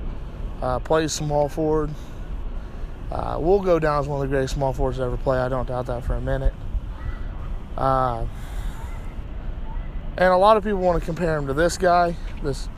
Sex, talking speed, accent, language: male, 185 wpm, American, English